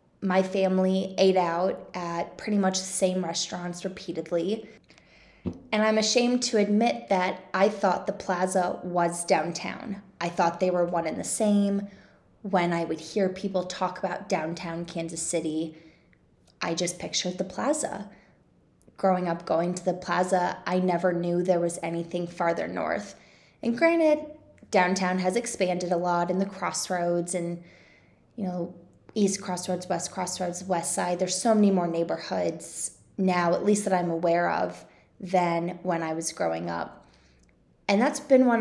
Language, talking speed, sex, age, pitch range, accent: English, 155 wpm, female, 20-39, 170-195 Hz, American